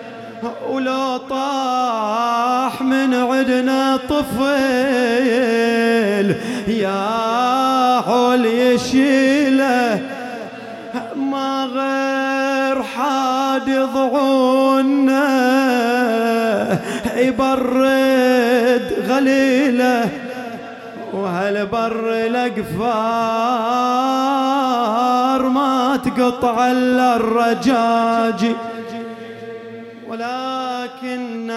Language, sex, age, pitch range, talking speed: English, male, 30-49, 195-255 Hz, 40 wpm